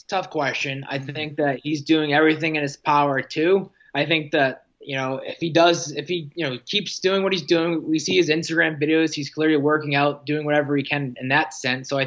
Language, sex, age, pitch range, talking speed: English, male, 20-39, 140-165 Hz, 235 wpm